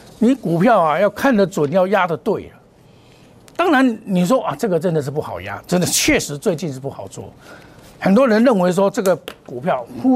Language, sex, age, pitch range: Chinese, male, 60-79, 140-205 Hz